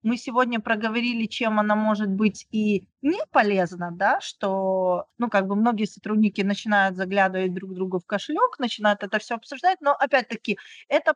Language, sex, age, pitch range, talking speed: Ukrainian, female, 20-39, 195-240 Hz, 165 wpm